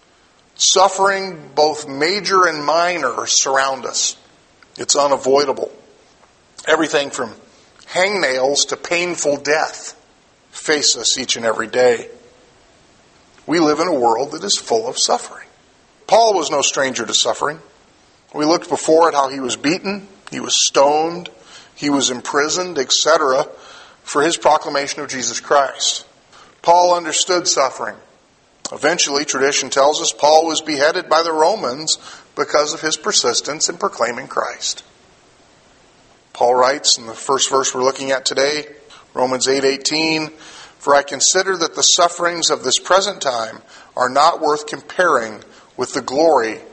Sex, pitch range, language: male, 135-175 Hz, English